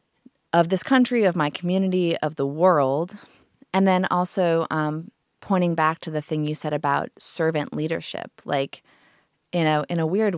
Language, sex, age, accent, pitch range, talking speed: English, female, 20-39, American, 145-170 Hz, 170 wpm